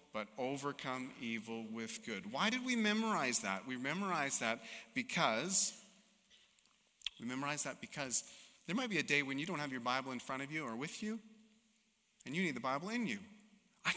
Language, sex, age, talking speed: English, male, 30-49, 190 wpm